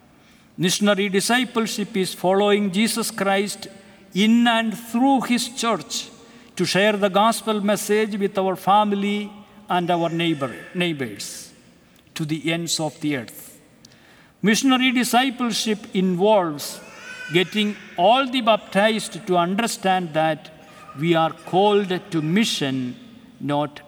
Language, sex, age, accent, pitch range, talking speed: English, male, 60-79, Indian, 165-225 Hz, 110 wpm